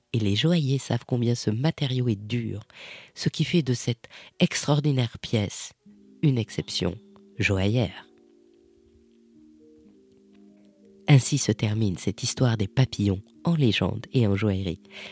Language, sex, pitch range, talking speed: French, female, 100-140 Hz, 125 wpm